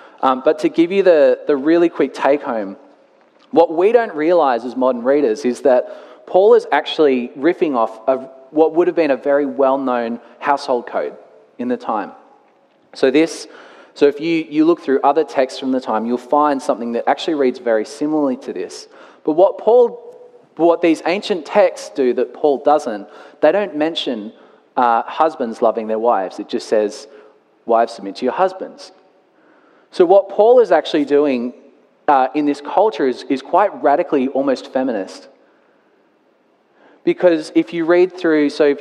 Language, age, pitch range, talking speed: English, 30-49, 125-170 Hz, 170 wpm